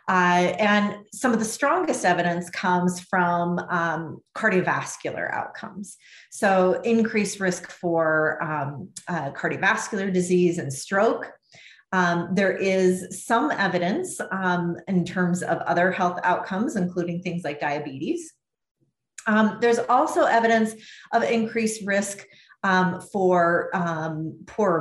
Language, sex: English, female